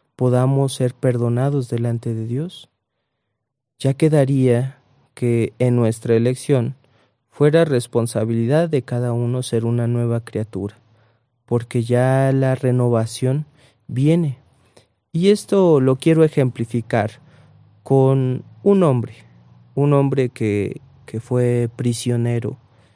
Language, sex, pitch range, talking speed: Spanish, male, 120-140 Hz, 105 wpm